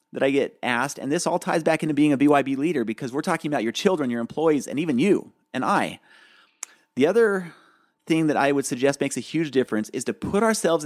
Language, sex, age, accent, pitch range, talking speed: English, male, 40-59, American, 130-175 Hz, 230 wpm